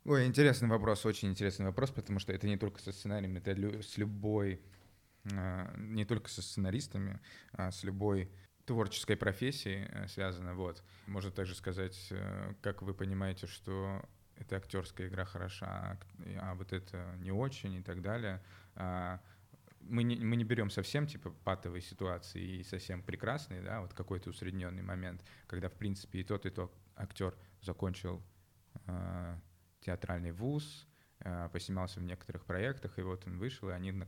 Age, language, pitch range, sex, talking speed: 20-39, Russian, 90-100 Hz, male, 150 wpm